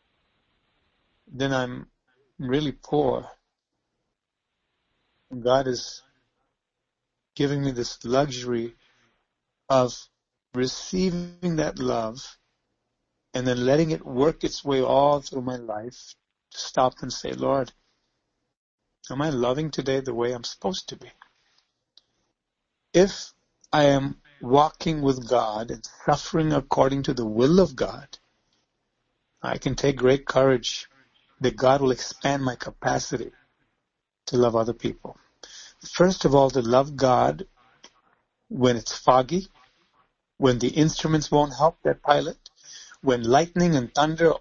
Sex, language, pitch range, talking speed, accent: male, English, 125-150 Hz, 120 wpm, American